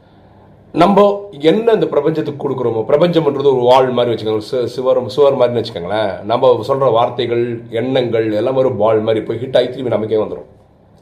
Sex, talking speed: male, 150 wpm